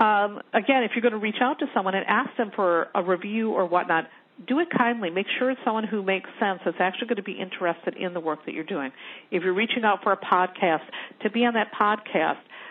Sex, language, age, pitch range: female, English, 50-69, 190-235 Hz